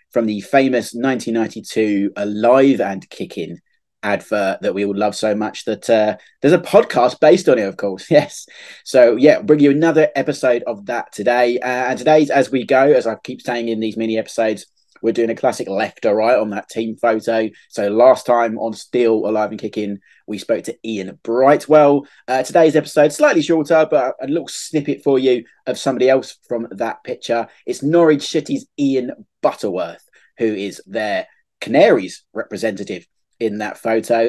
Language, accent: English, British